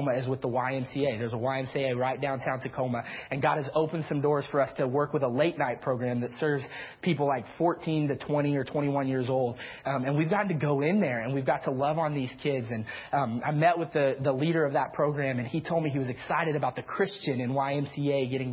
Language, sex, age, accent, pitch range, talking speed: English, male, 30-49, American, 135-170 Hz, 245 wpm